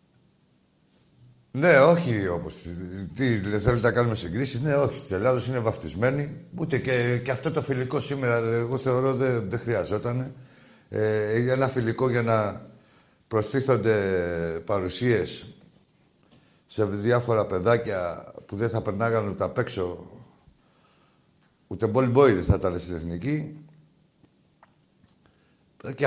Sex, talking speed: male, 115 wpm